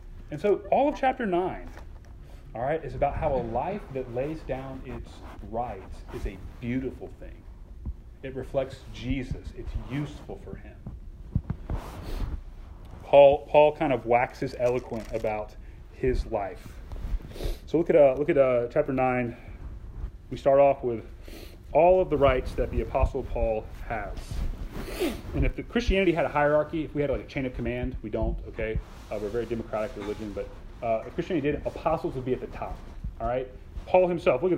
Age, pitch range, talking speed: 30-49, 95-145 Hz, 175 wpm